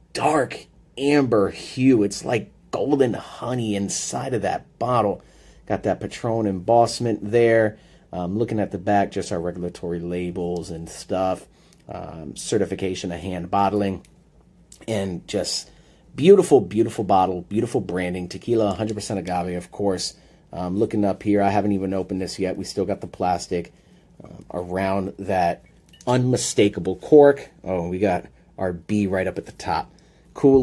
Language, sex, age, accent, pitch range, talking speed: English, male, 30-49, American, 95-120 Hz, 145 wpm